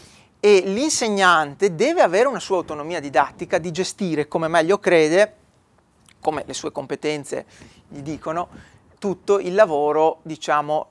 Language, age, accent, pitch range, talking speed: Italian, 40-59, native, 165-230 Hz, 125 wpm